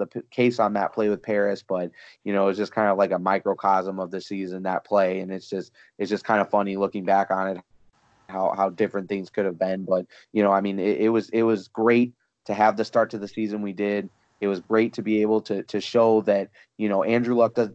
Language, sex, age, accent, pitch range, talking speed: English, male, 30-49, American, 100-110 Hz, 260 wpm